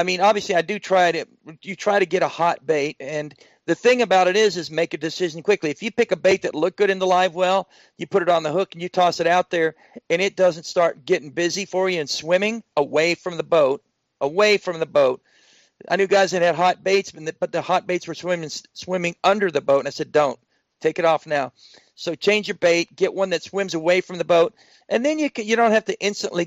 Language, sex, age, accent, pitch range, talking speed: English, male, 50-69, American, 160-195 Hz, 255 wpm